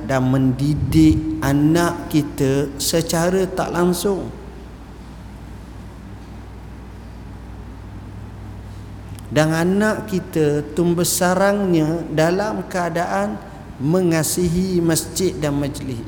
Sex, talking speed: male, 65 wpm